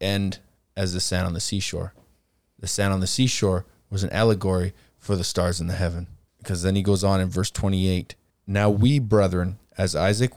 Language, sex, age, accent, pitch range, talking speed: English, male, 20-39, American, 90-110 Hz, 195 wpm